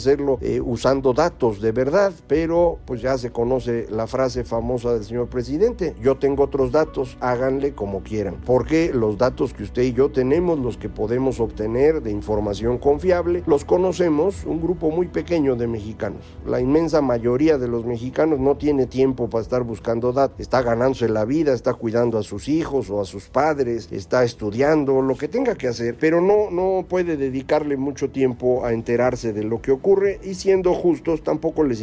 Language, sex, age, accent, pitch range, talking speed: Spanish, male, 50-69, Mexican, 120-150 Hz, 185 wpm